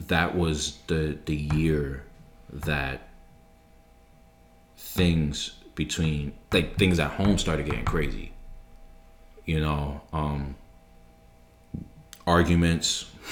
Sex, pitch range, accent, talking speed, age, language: male, 75-90 Hz, American, 85 wpm, 20-39, English